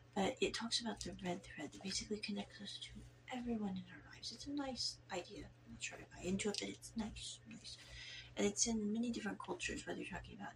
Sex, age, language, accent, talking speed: female, 40-59, English, American, 240 wpm